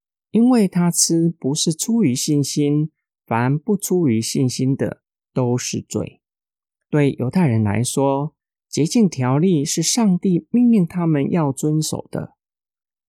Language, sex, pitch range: Chinese, male, 120-175 Hz